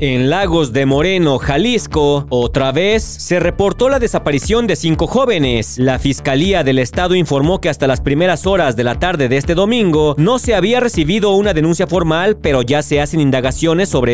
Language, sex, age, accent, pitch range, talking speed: Spanish, male, 40-59, Mexican, 135-195 Hz, 180 wpm